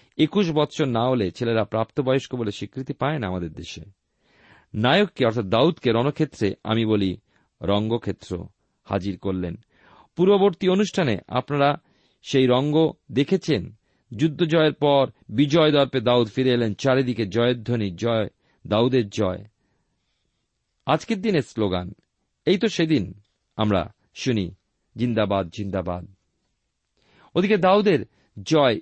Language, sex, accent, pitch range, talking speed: Bengali, male, native, 100-145 Hz, 75 wpm